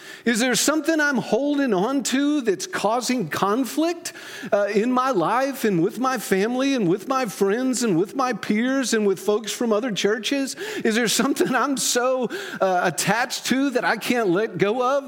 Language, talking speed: English, 185 wpm